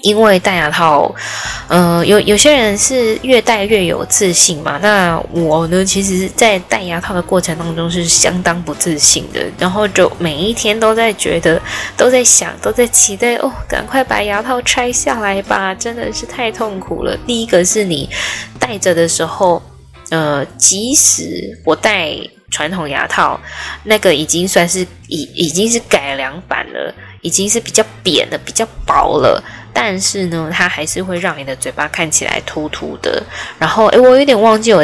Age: 10-29